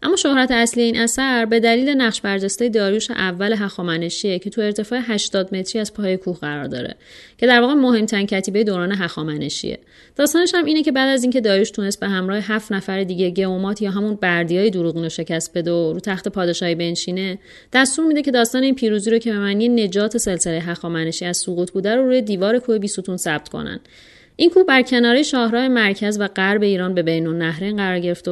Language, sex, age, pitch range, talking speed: Persian, female, 30-49, 185-230 Hz, 205 wpm